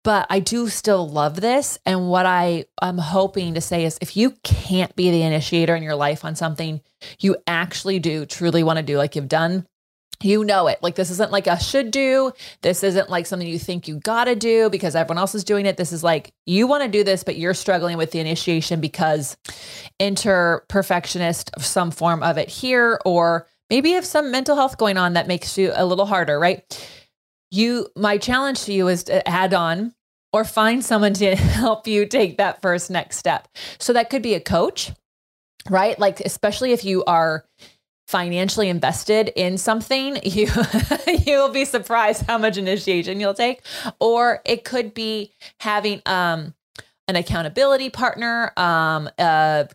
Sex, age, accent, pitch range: female, 30-49, American, 175-225 Hz